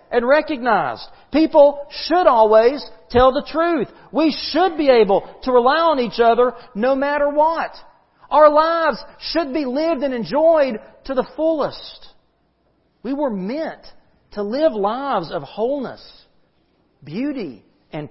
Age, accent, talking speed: 40-59, American, 135 wpm